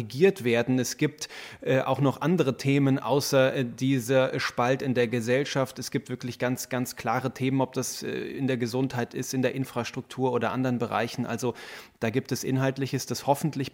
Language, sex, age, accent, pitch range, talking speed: German, male, 30-49, German, 125-140 Hz, 190 wpm